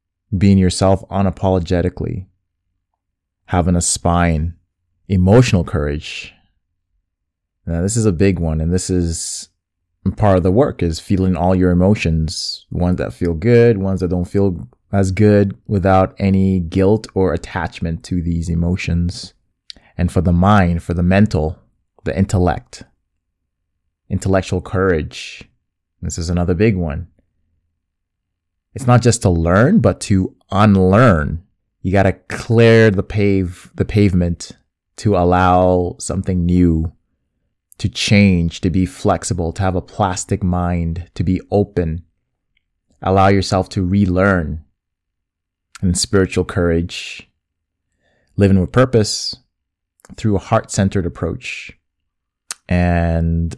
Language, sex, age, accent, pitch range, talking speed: English, male, 20-39, American, 85-100 Hz, 120 wpm